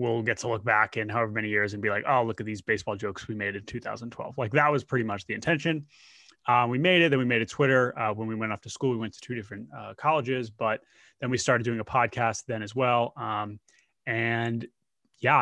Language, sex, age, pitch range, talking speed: English, male, 20-39, 110-125 Hz, 255 wpm